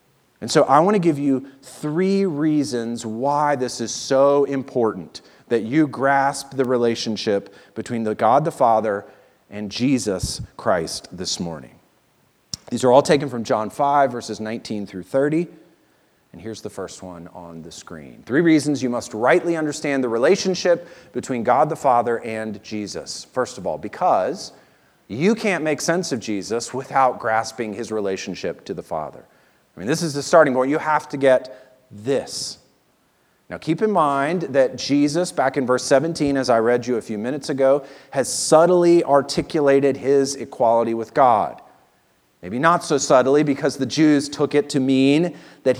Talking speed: 170 wpm